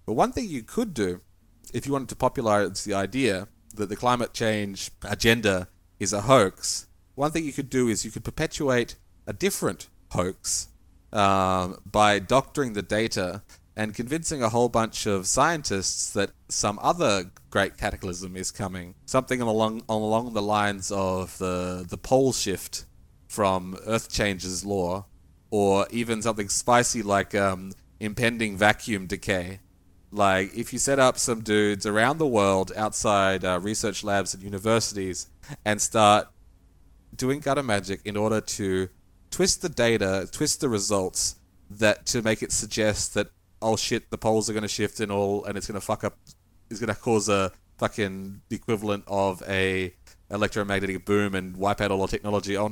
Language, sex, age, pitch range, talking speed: English, male, 30-49, 95-115 Hz, 165 wpm